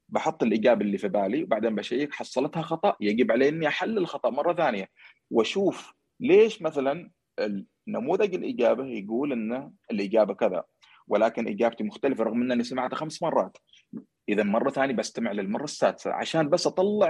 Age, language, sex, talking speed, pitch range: 30-49, Arabic, male, 145 wpm, 110-180 Hz